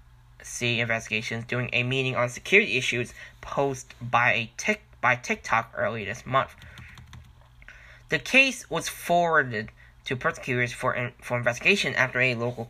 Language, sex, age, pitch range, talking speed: English, male, 10-29, 115-150 Hz, 130 wpm